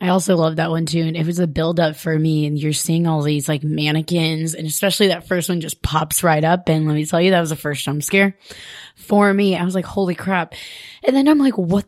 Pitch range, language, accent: 160-195 Hz, English, American